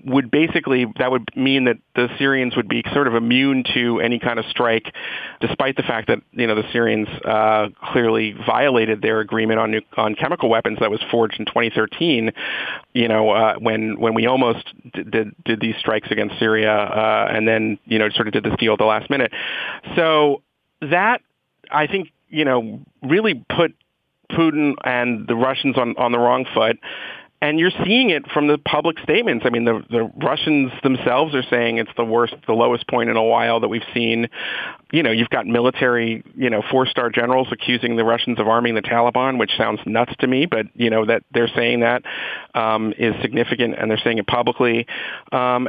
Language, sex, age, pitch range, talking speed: English, male, 40-59, 115-135 Hz, 195 wpm